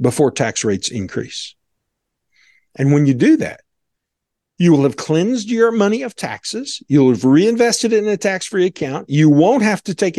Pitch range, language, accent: 140-220 Hz, English, American